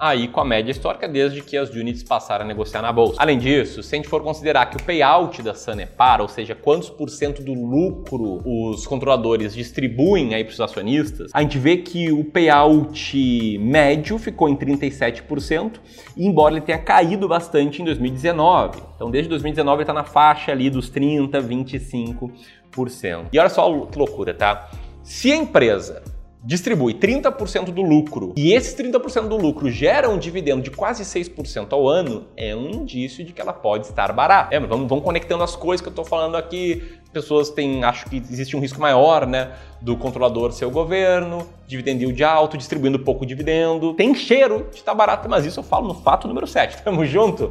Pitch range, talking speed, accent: 130-170 Hz, 185 wpm, Brazilian